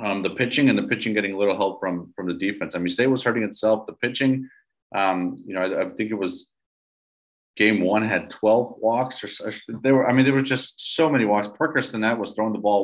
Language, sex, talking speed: English, male, 245 wpm